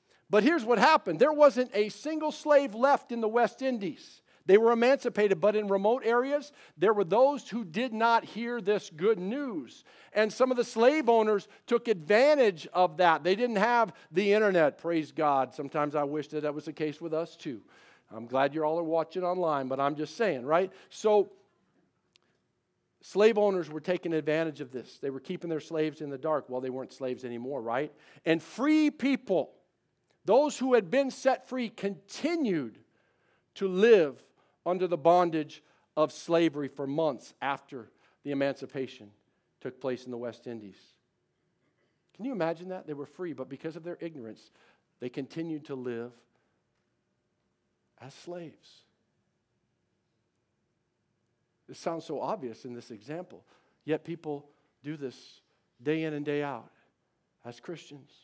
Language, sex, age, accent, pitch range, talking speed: English, male, 50-69, American, 145-225 Hz, 160 wpm